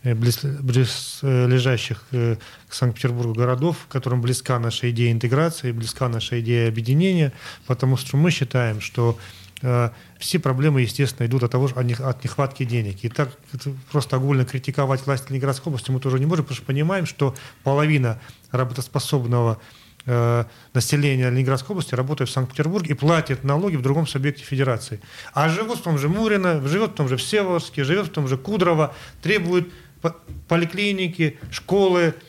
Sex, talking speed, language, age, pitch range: male, 150 wpm, Russian, 30-49, 130-160 Hz